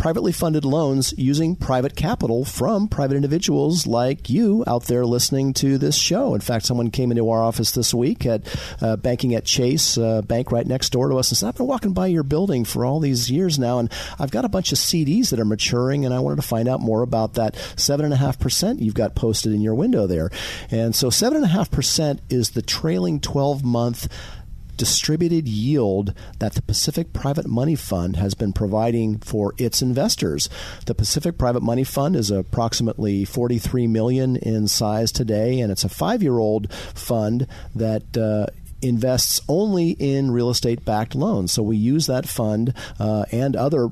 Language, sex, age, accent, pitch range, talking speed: English, male, 40-59, American, 105-130 Hz, 180 wpm